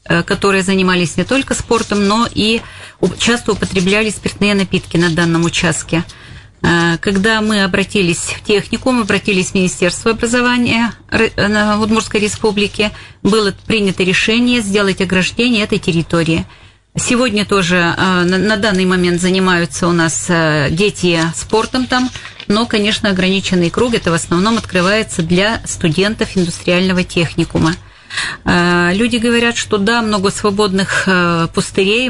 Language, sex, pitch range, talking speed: Russian, female, 180-215 Hz, 120 wpm